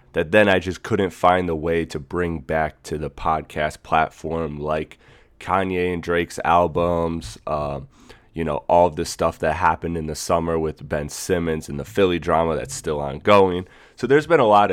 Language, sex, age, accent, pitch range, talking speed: English, male, 20-39, American, 75-90 Hz, 185 wpm